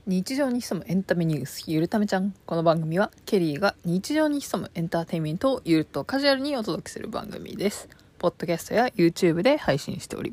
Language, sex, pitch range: Japanese, female, 170-220 Hz